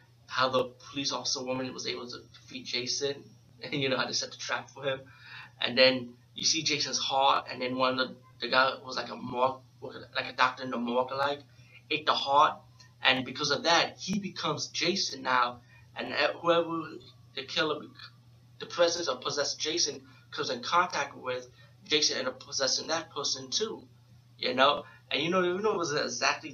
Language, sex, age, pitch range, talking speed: English, male, 20-39, 120-150 Hz, 190 wpm